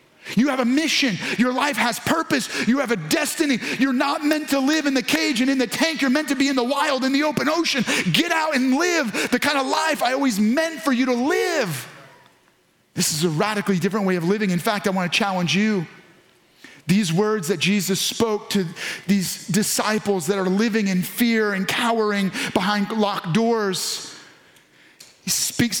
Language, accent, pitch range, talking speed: English, American, 195-250 Hz, 195 wpm